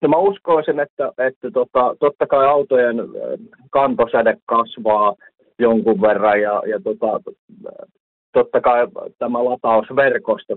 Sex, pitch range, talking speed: male, 100-125 Hz, 120 wpm